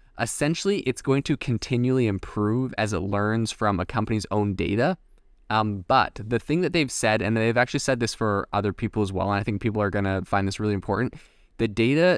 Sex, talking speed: male, 215 wpm